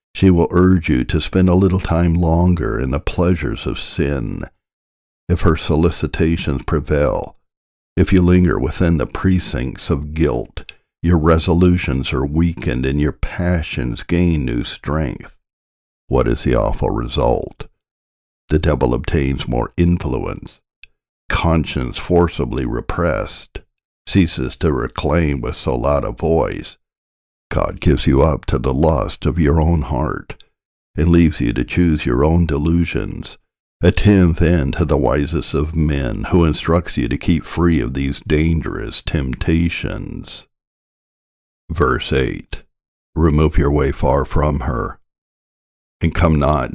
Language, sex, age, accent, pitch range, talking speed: English, male, 60-79, American, 70-85 Hz, 135 wpm